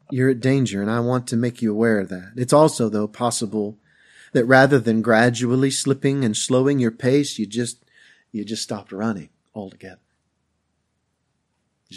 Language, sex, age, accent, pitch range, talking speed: English, male, 50-69, American, 105-140 Hz, 165 wpm